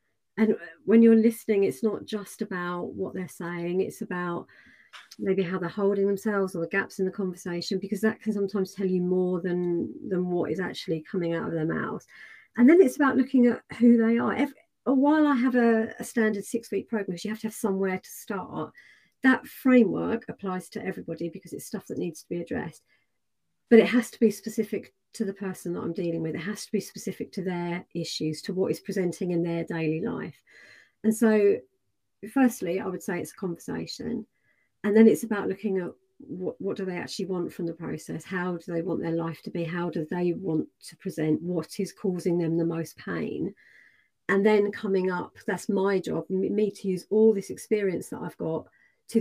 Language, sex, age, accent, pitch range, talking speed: English, female, 40-59, British, 175-220 Hz, 210 wpm